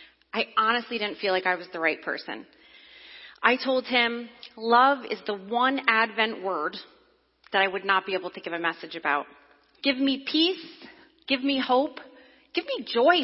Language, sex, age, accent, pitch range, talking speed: English, female, 30-49, American, 190-250 Hz, 175 wpm